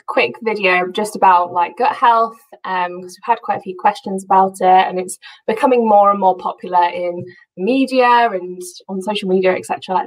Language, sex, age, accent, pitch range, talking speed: English, female, 10-29, British, 185-240 Hz, 190 wpm